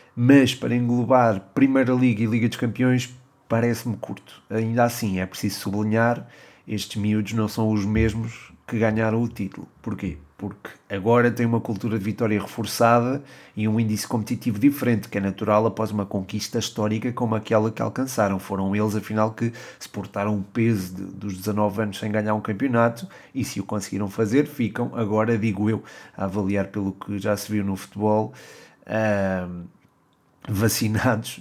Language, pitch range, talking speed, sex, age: Portuguese, 105-120 Hz, 165 wpm, male, 30-49